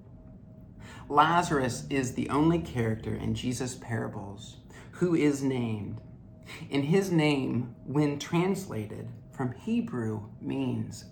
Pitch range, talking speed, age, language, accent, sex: 115-140 Hz, 105 wpm, 40-59, English, American, male